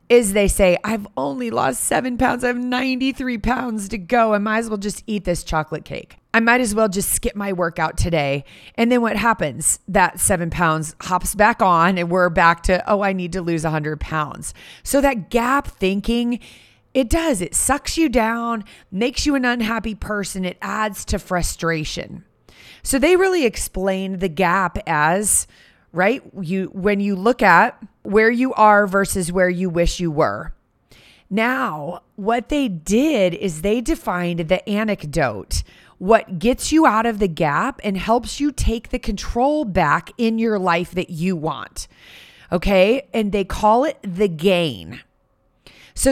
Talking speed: 170 wpm